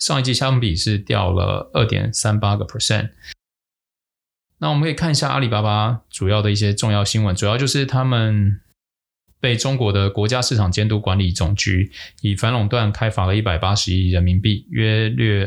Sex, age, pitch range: male, 20-39, 95-120 Hz